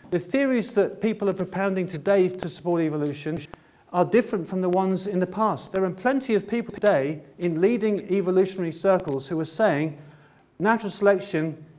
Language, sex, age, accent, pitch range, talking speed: English, male, 40-59, British, 150-195 Hz, 170 wpm